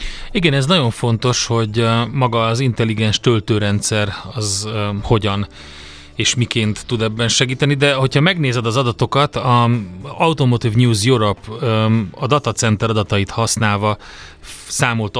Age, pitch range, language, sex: 30-49, 110-125 Hz, Hungarian, male